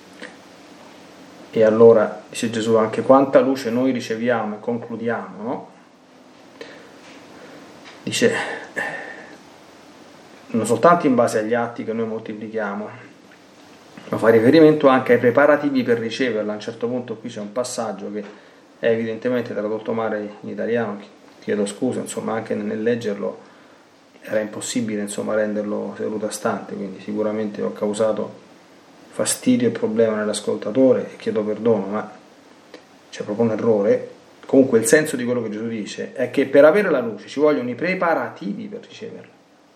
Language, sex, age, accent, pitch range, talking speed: Italian, male, 30-49, native, 110-140 Hz, 140 wpm